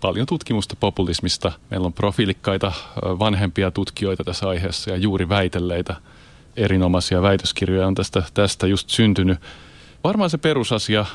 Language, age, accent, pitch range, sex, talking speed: Finnish, 30-49, native, 90-105 Hz, male, 125 wpm